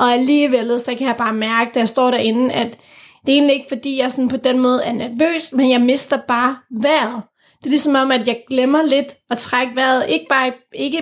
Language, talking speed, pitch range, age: English, 230 wpm, 235-275 Hz, 30-49